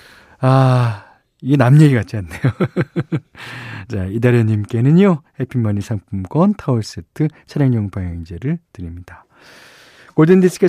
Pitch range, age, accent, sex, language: 110-160 Hz, 40-59, native, male, Korean